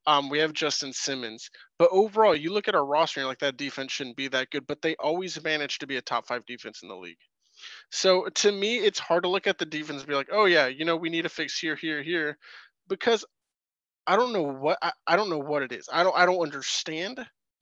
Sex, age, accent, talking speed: male, 20-39, American, 255 wpm